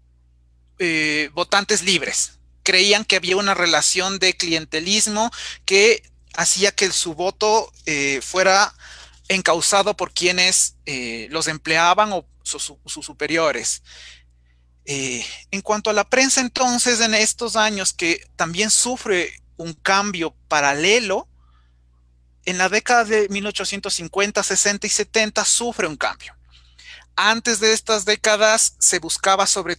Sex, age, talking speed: male, 30-49, 125 wpm